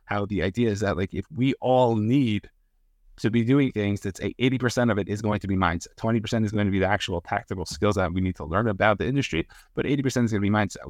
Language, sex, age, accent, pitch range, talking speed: English, male, 30-49, American, 100-120 Hz, 260 wpm